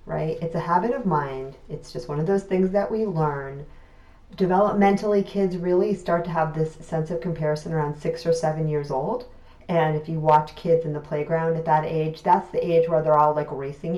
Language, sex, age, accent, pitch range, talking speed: English, female, 40-59, American, 145-170 Hz, 215 wpm